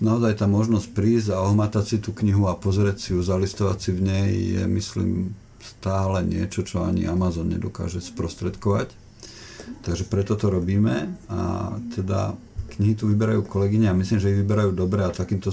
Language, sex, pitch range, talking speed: Slovak, male, 95-110 Hz, 175 wpm